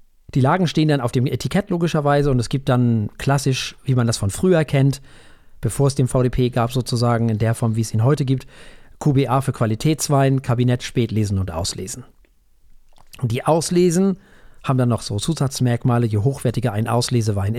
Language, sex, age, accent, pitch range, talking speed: German, male, 40-59, German, 120-155 Hz, 175 wpm